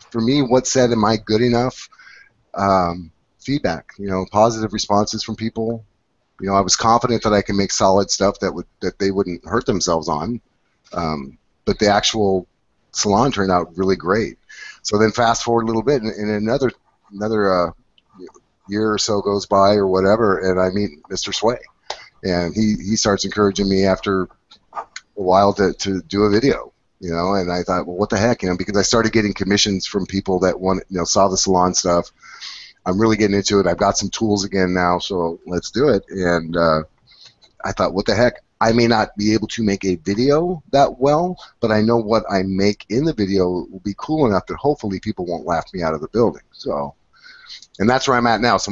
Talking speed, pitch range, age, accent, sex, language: 210 wpm, 95-115 Hz, 30-49, American, male, English